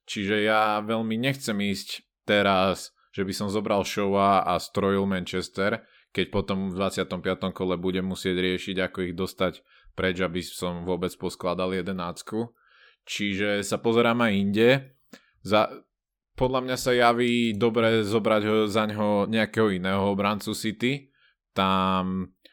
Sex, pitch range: male, 95-110 Hz